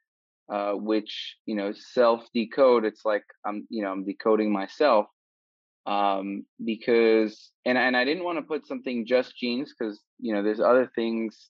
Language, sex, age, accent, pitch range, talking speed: English, male, 20-39, American, 110-130 Hz, 165 wpm